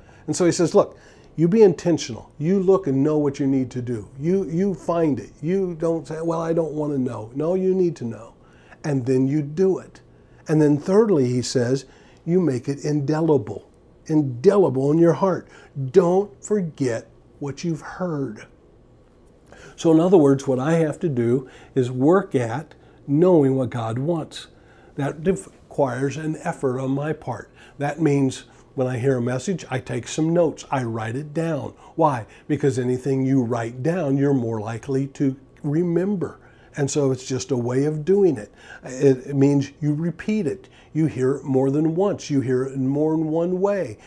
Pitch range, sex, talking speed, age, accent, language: 130-165 Hz, male, 185 wpm, 50-69, American, English